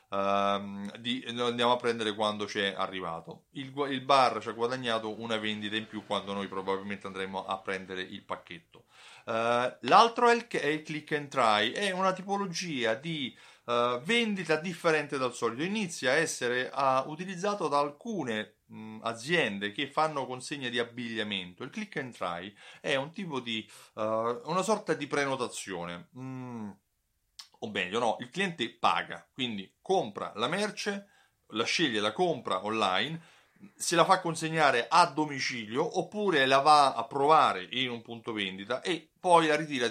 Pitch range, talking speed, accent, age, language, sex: 110-160 Hz, 160 wpm, native, 30-49, Italian, male